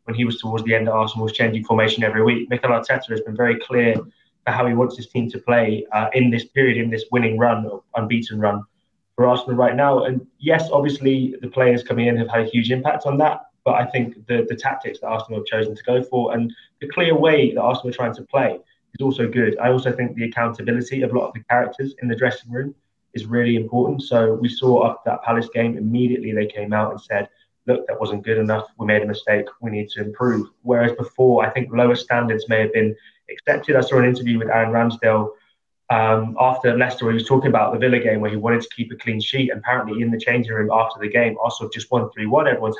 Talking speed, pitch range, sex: 250 wpm, 110-125 Hz, male